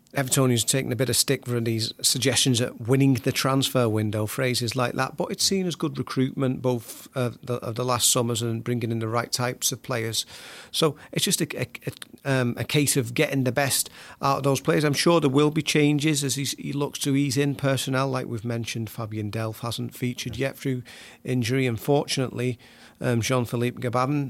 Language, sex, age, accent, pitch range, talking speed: English, male, 40-59, British, 120-135 Hz, 205 wpm